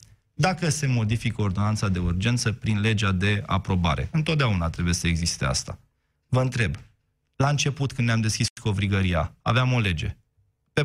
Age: 20-39